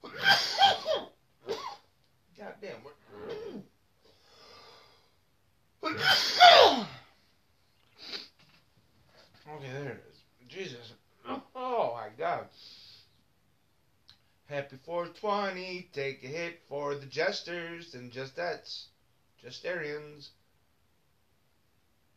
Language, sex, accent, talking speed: English, male, American, 60 wpm